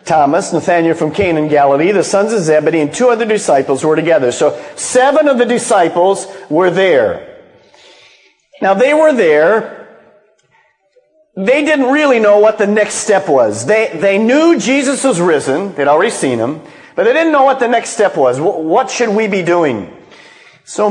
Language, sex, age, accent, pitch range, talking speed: English, male, 50-69, American, 155-245 Hz, 170 wpm